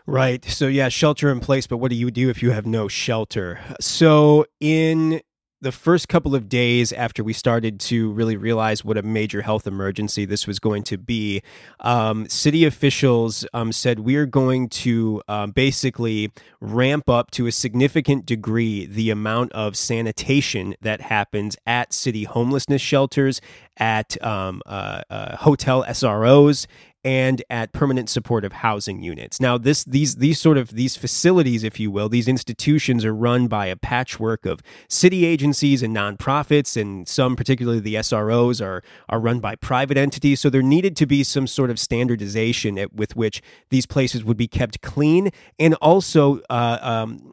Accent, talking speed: American, 170 wpm